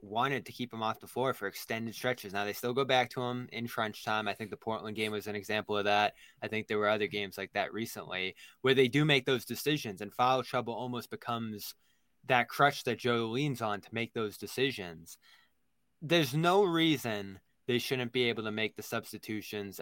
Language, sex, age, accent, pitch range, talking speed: English, male, 20-39, American, 105-125 Hz, 215 wpm